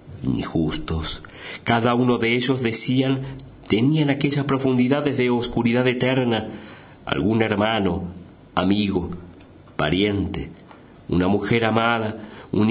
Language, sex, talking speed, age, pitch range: Spanish, male, 100 wpm, 50-69, 90-120 Hz